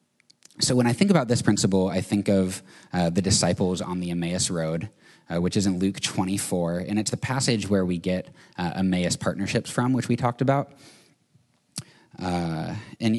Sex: male